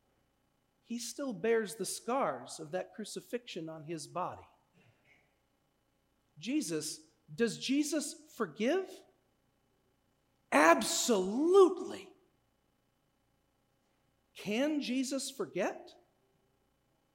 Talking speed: 65 wpm